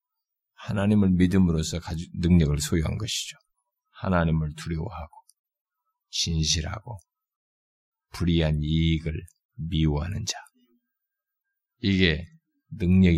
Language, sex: Korean, male